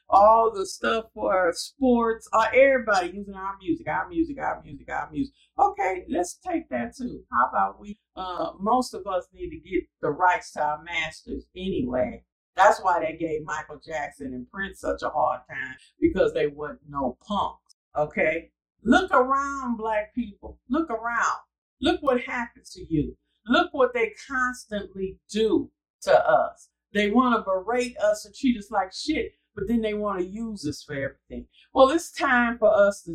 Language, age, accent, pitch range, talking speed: English, 50-69, American, 200-270 Hz, 175 wpm